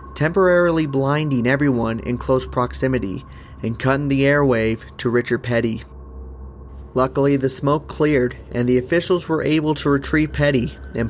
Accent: American